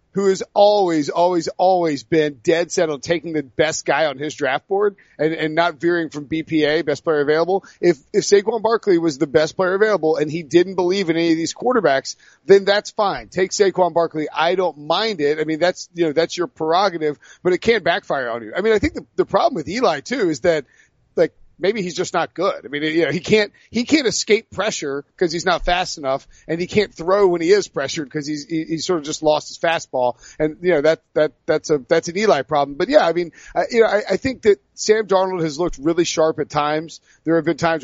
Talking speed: 240 wpm